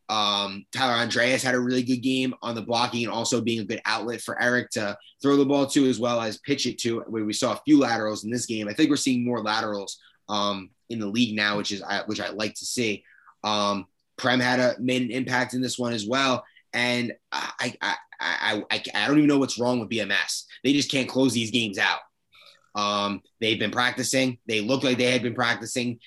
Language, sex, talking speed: English, male, 230 wpm